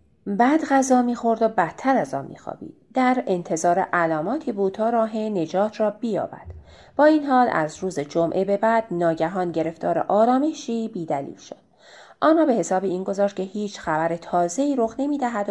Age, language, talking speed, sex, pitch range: 30-49, Persian, 160 wpm, female, 165-230 Hz